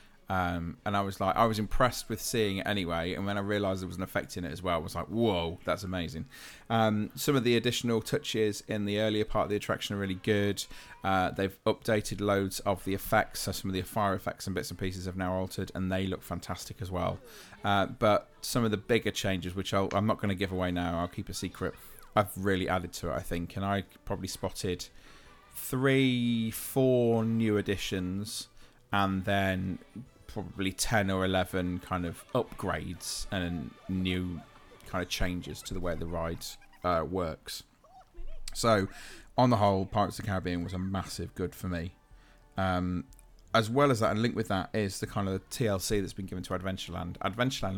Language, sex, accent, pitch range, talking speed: English, male, British, 90-105 Hz, 205 wpm